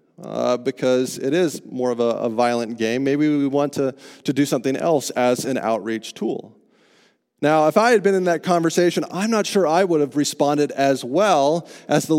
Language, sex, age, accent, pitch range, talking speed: English, male, 30-49, American, 120-160 Hz, 200 wpm